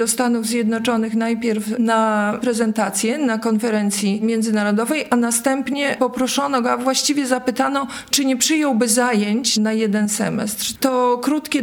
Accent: native